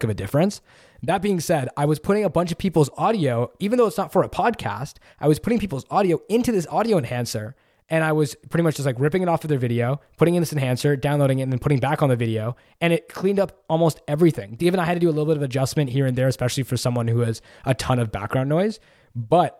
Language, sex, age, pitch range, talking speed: English, male, 20-39, 130-165 Hz, 265 wpm